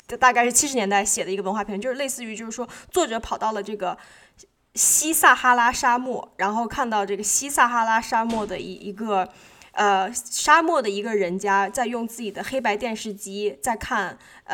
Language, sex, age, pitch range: Chinese, female, 10-29, 195-250 Hz